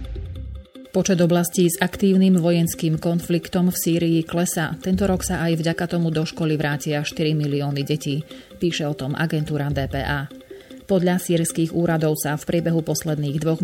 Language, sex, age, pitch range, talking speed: Slovak, female, 30-49, 150-175 Hz, 150 wpm